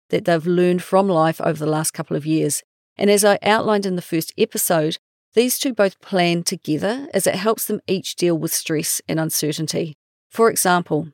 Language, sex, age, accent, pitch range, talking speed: English, female, 40-59, Australian, 160-200 Hz, 195 wpm